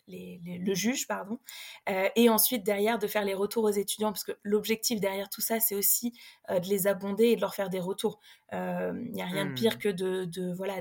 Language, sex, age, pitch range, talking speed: French, female, 20-39, 200-230 Hz, 245 wpm